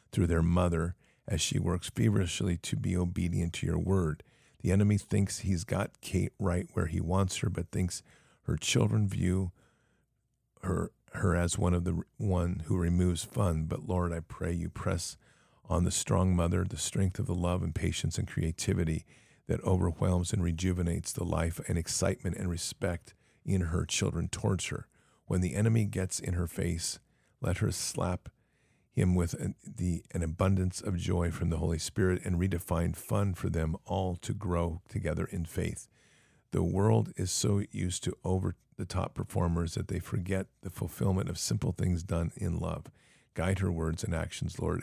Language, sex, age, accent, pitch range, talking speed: English, male, 50-69, American, 85-100 Hz, 175 wpm